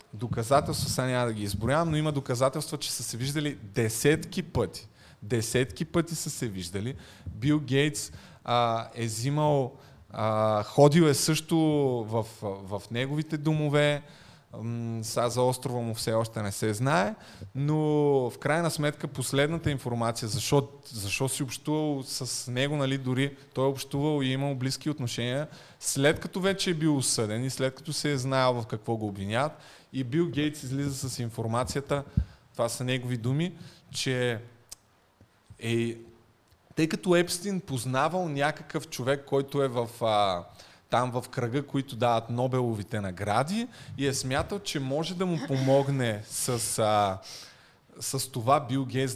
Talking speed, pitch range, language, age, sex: 150 wpm, 115-150 Hz, Bulgarian, 20-39, male